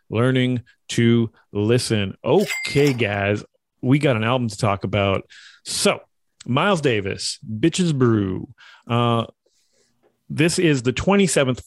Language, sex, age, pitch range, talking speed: English, male, 30-49, 115-145 Hz, 115 wpm